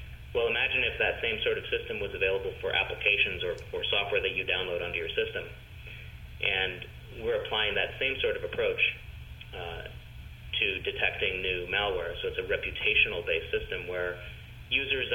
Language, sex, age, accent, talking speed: English, male, 30-49, American, 160 wpm